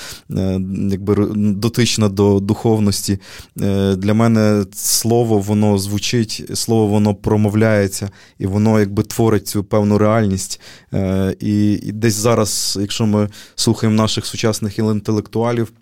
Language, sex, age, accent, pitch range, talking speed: Ukrainian, male, 20-39, native, 100-110 Hz, 110 wpm